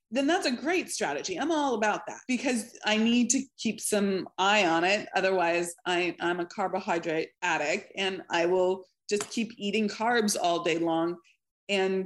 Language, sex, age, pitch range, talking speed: English, female, 30-49, 180-235 Hz, 175 wpm